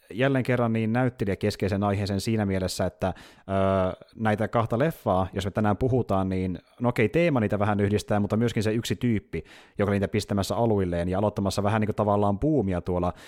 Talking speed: 185 wpm